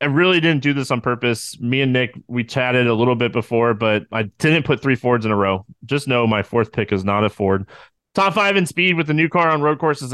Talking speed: 265 wpm